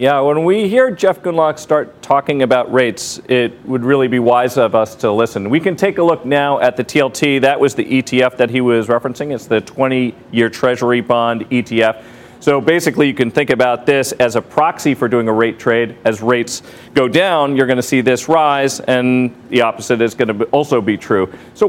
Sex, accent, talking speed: male, American, 215 wpm